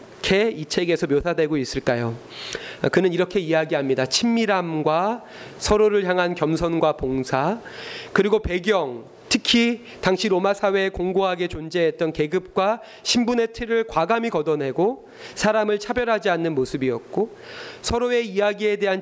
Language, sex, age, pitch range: Korean, male, 30-49, 155-210 Hz